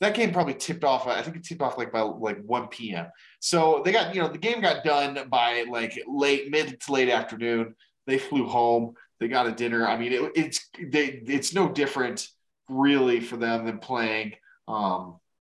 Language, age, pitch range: English, 20-39, 110-140 Hz